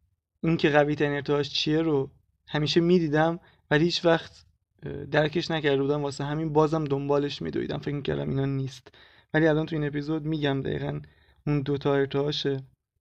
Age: 20-39